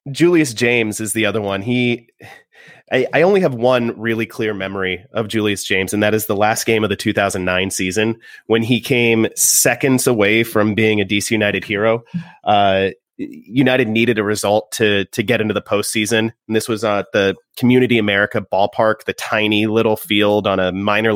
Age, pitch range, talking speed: 30-49, 105-120 Hz, 185 wpm